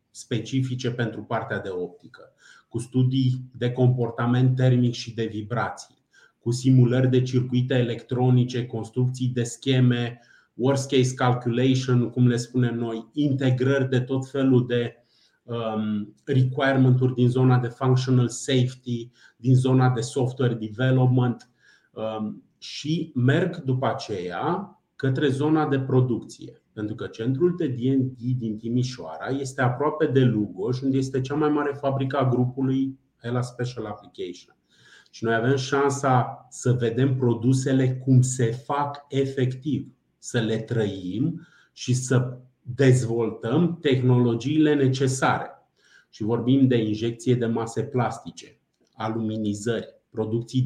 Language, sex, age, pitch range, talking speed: Romanian, male, 30-49, 115-130 Hz, 120 wpm